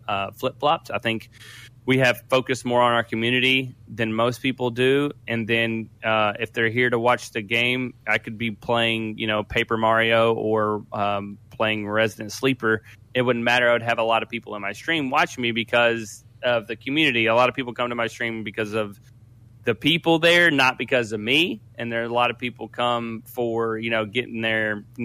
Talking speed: 215 wpm